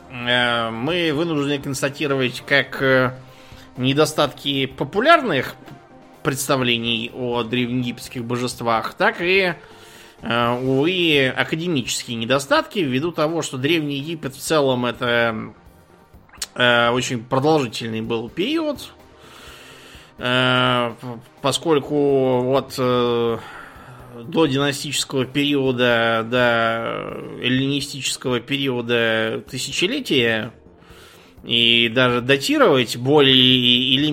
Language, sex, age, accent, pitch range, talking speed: Russian, male, 20-39, native, 115-140 Hz, 70 wpm